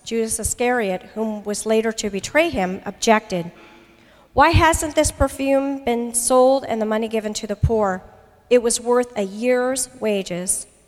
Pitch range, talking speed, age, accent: 195-245 Hz, 155 wpm, 50-69, American